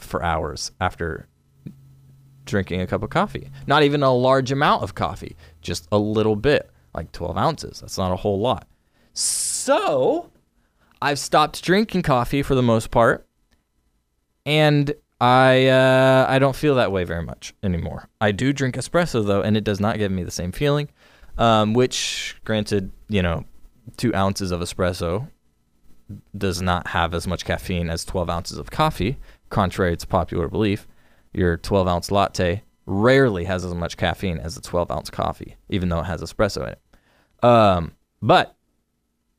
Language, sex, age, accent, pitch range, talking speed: English, male, 20-39, American, 90-125 Hz, 165 wpm